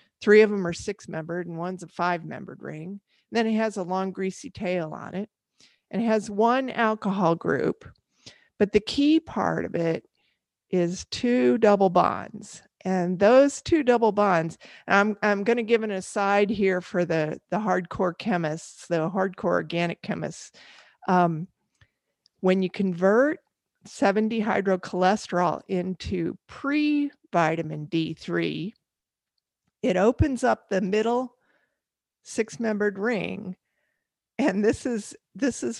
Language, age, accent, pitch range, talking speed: English, 50-69, American, 175-225 Hz, 130 wpm